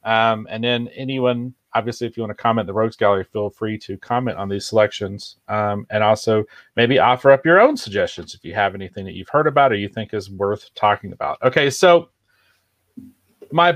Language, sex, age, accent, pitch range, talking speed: English, male, 40-59, American, 115-150 Hz, 205 wpm